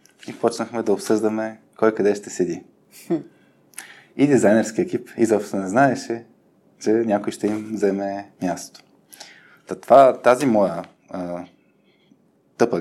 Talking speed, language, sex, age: 110 wpm, Bulgarian, male, 20-39